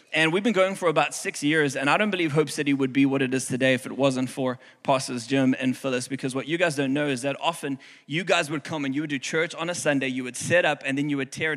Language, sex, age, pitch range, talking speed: English, male, 20-39, 135-190 Hz, 300 wpm